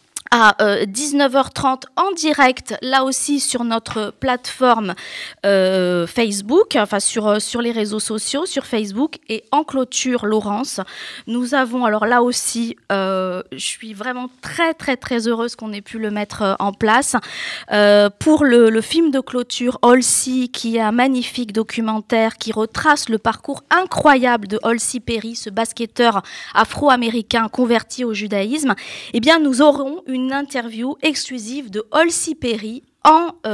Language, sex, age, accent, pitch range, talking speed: French, female, 20-39, French, 220-265 Hz, 150 wpm